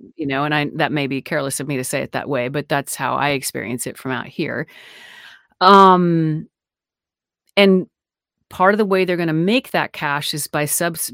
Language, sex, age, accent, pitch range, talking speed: English, female, 40-59, American, 150-195 Hz, 210 wpm